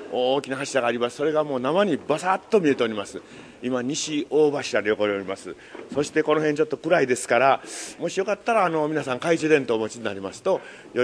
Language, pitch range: Japanese, 120-170 Hz